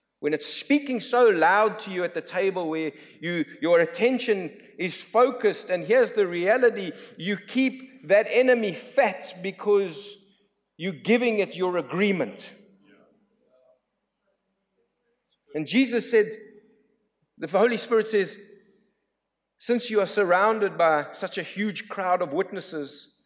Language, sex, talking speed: English, male, 125 wpm